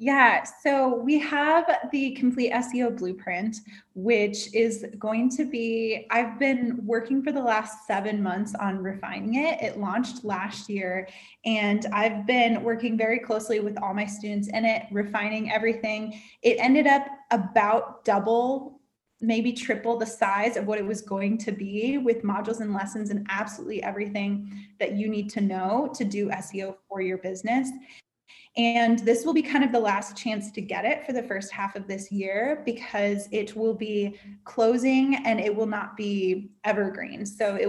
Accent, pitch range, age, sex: American, 200-235 Hz, 20-39, female